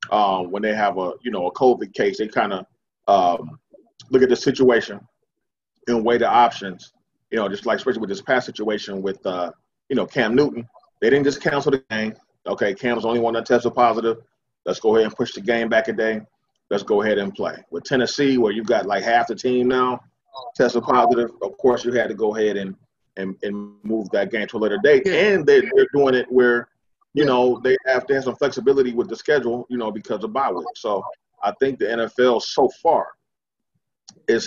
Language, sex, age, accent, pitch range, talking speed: English, male, 30-49, American, 105-125 Hz, 215 wpm